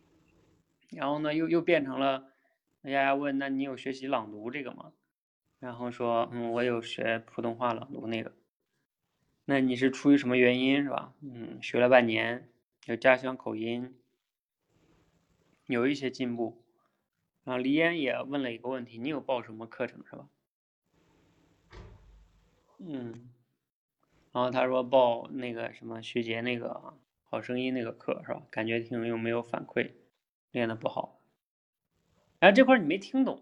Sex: male